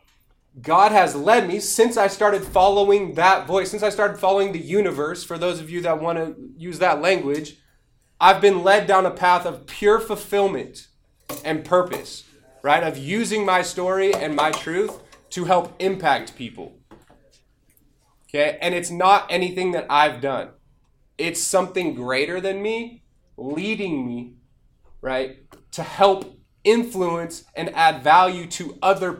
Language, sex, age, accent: English, male, 20-39, American